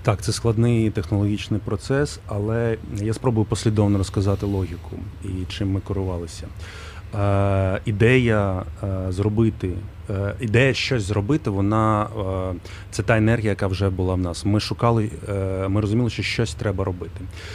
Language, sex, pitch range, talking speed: Ukrainian, male, 95-110 Hz, 135 wpm